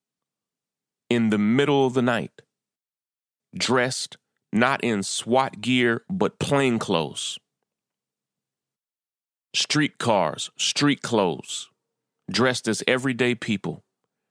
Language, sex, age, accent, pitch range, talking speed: English, male, 30-49, American, 100-135 Hz, 90 wpm